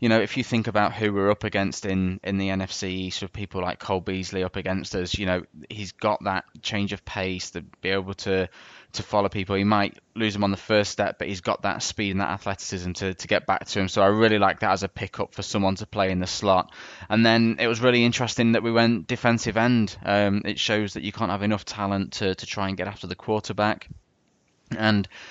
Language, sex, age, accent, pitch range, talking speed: English, male, 20-39, British, 95-105 Hz, 245 wpm